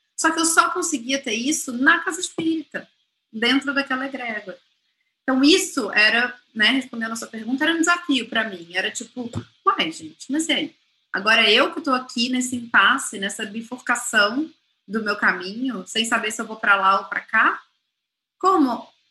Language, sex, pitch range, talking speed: Portuguese, female, 195-275 Hz, 175 wpm